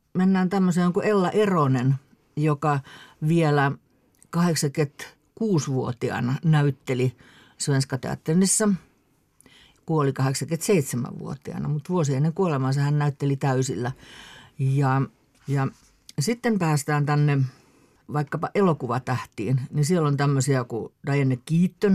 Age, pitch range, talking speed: 50-69, 135-175 Hz, 85 wpm